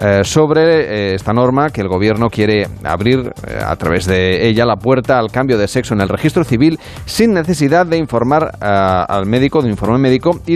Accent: Spanish